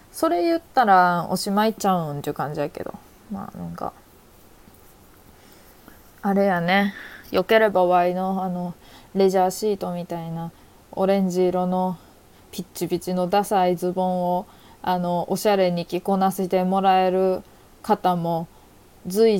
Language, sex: Japanese, female